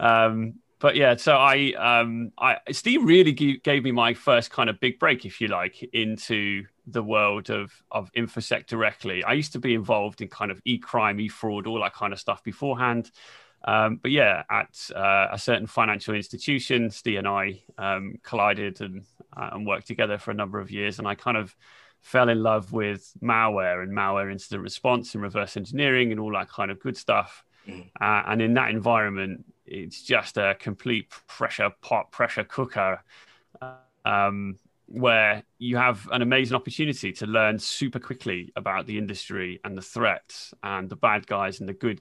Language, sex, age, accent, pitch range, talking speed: English, male, 30-49, British, 100-120 Hz, 185 wpm